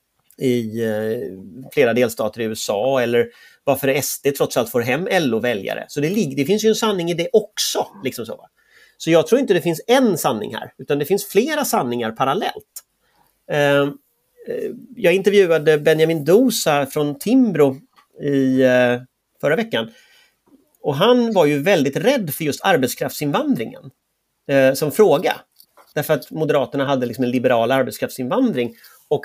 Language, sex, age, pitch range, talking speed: Swedish, male, 30-49, 130-215 Hz, 155 wpm